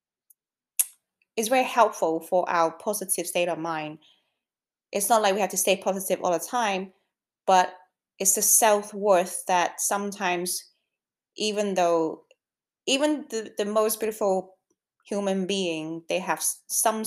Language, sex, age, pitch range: English, female, 20-39, 175-265 Hz